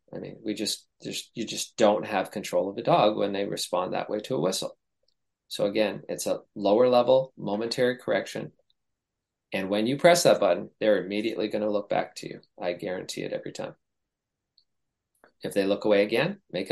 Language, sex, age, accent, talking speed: English, male, 40-59, American, 190 wpm